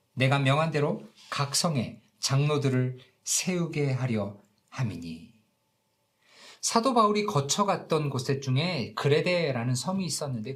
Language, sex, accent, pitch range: Korean, male, native, 125-165 Hz